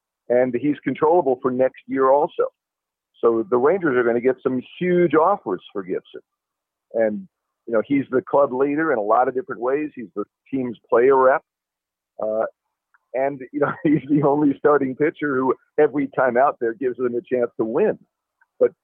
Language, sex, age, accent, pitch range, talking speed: English, male, 50-69, American, 120-160 Hz, 185 wpm